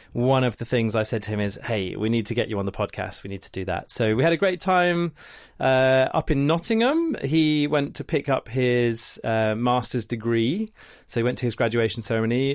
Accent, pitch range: British, 110-145 Hz